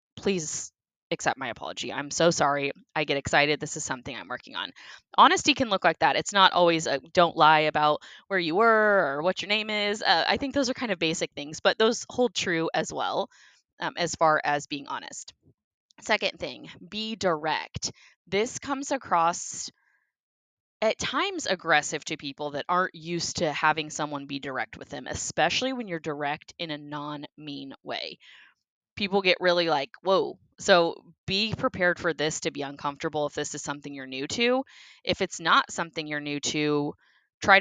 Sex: female